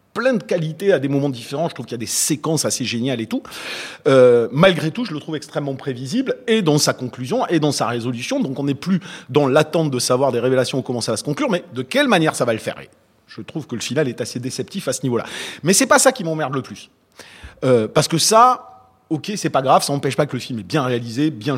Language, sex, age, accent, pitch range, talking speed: French, male, 40-59, French, 120-155 Hz, 265 wpm